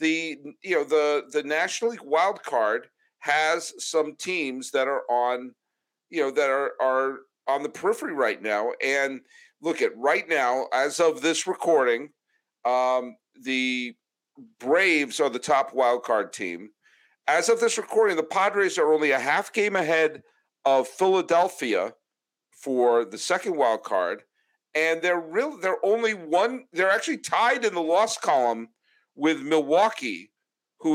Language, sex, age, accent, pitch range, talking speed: English, male, 50-69, American, 145-240 Hz, 150 wpm